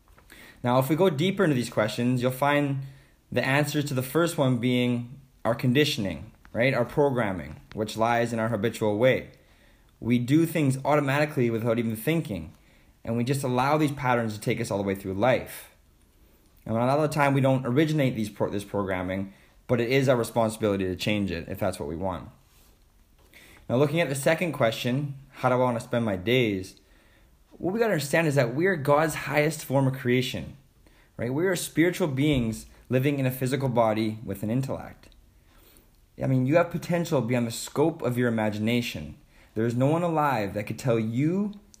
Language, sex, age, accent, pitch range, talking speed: English, male, 20-39, American, 110-140 Hz, 190 wpm